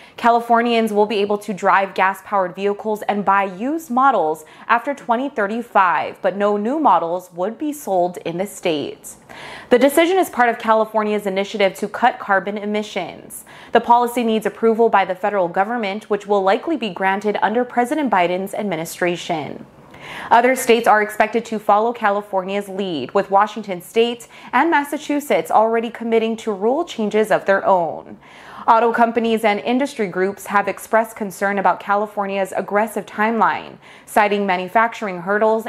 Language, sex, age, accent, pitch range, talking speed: English, female, 20-39, American, 195-235 Hz, 150 wpm